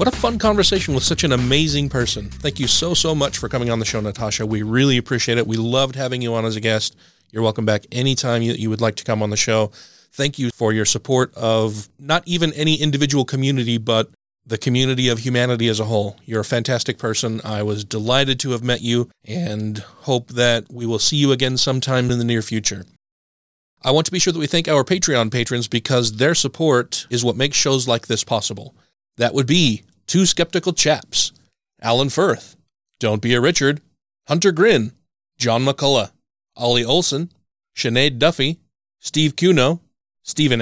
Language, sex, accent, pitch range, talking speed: English, male, American, 115-150 Hz, 195 wpm